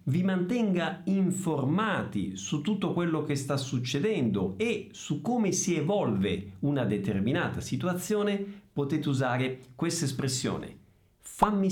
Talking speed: 115 wpm